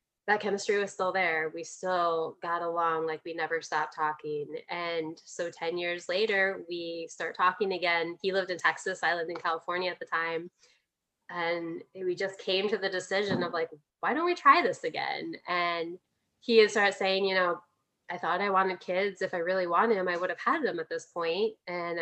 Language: English